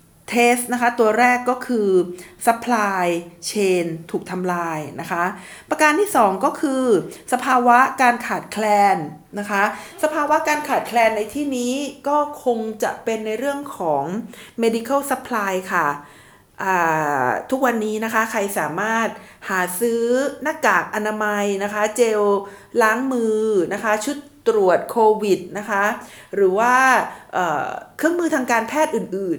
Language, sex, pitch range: Thai, female, 200-250 Hz